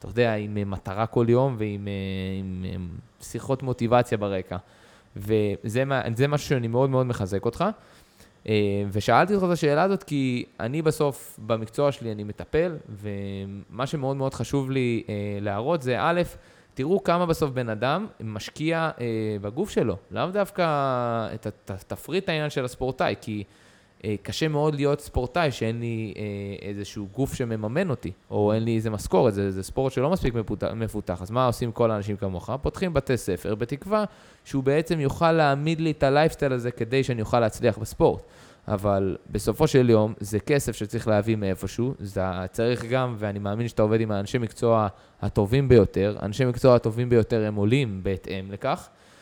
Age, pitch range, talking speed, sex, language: 20-39, 105-135 Hz, 155 wpm, male, Hebrew